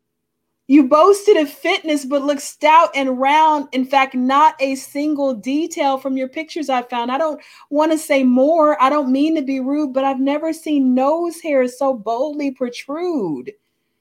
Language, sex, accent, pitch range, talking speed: English, female, American, 230-295 Hz, 175 wpm